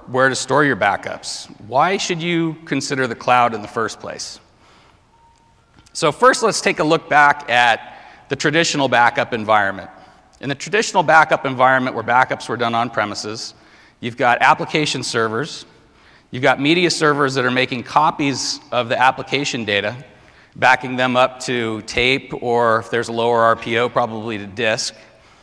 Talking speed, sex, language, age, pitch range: 160 wpm, male, English, 40-59, 115-140 Hz